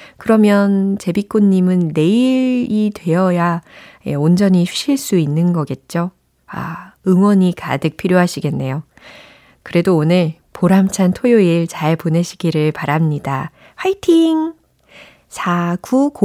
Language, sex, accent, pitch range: Korean, female, native, 165-220 Hz